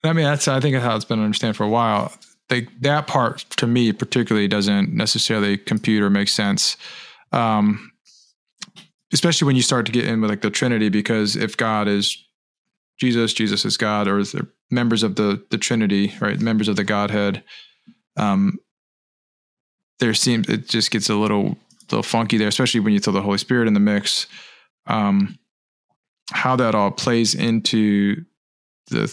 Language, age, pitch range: English, 20-39, 100-120 Hz